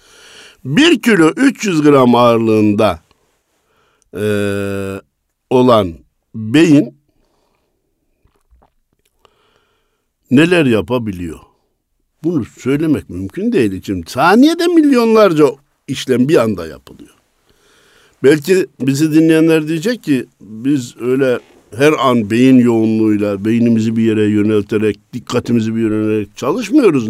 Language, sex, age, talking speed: Turkish, male, 60-79, 90 wpm